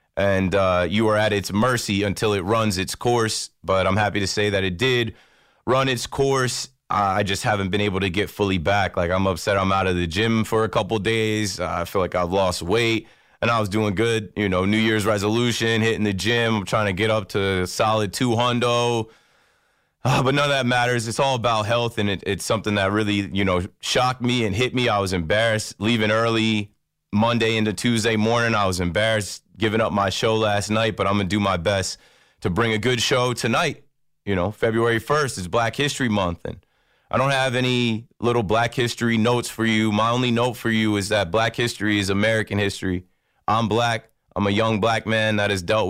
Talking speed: 220 wpm